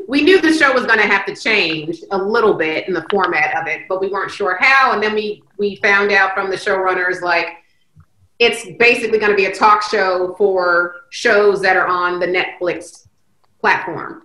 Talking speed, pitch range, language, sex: 205 wpm, 190-240 Hz, English, female